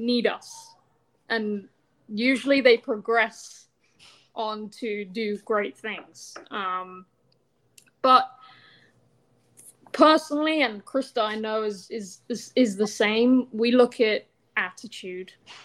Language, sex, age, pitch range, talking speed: English, female, 20-39, 205-245 Hz, 105 wpm